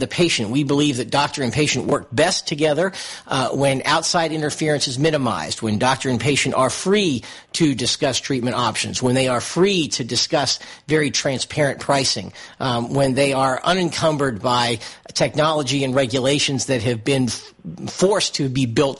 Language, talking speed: English, 165 wpm